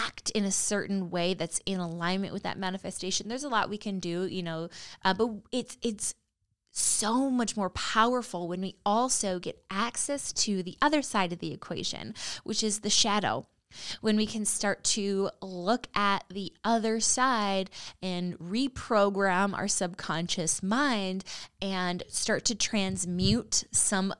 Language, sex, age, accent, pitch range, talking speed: English, female, 20-39, American, 185-230 Hz, 155 wpm